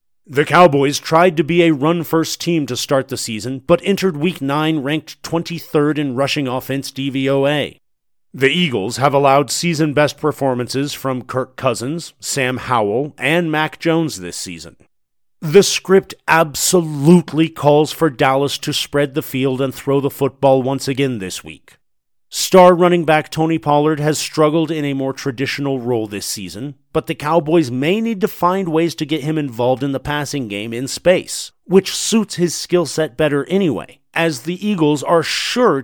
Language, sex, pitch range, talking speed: English, male, 135-160 Hz, 165 wpm